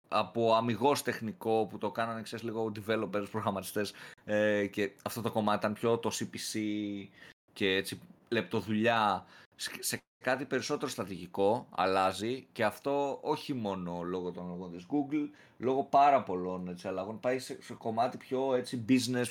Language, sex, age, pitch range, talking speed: Greek, male, 30-49, 100-130 Hz, 135 wpm